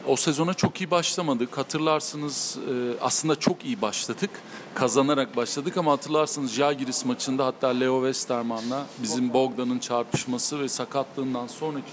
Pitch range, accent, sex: 130-160 Hz, native, male